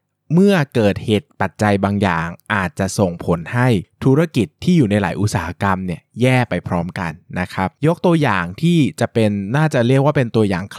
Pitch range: 95-130 Hz